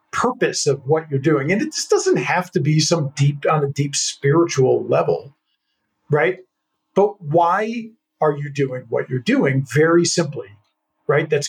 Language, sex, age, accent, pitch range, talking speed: English, male, 50-69, American, 140-190 Hz, 165 wpm